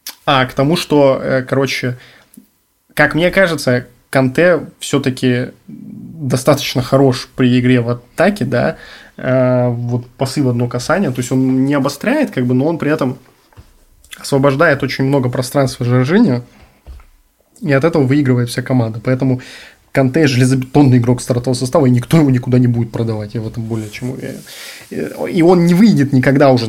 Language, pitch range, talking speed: Russian, 125-140 Hz, 155 wpm